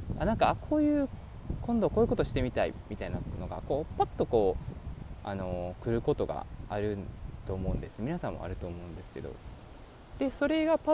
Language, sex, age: Japanese, male, 20-39